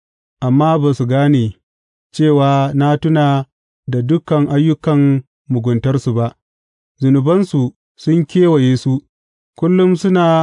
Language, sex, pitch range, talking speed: English, male, 125-160 Hz, 100 wpm